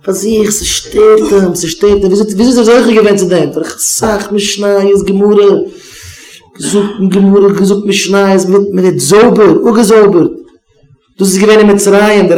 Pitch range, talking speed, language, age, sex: 170-205 Hz, 115 wpm, English, 30-49, male